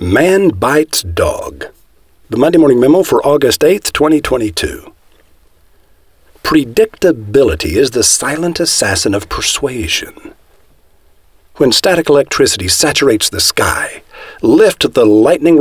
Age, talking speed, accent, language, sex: 50-69, 105 wpm, American, English, male